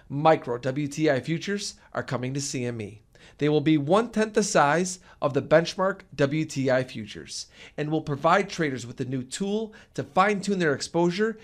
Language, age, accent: English, 40-59, American